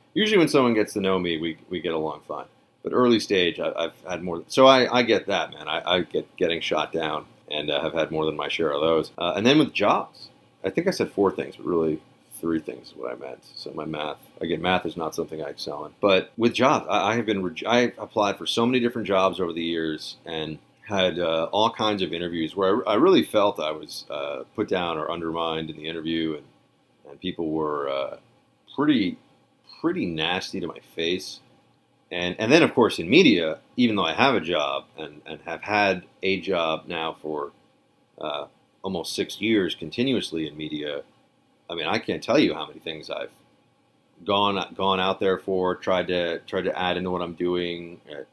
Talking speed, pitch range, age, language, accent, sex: 215 wpm, 80-110 Hz, 30-49, English, American, male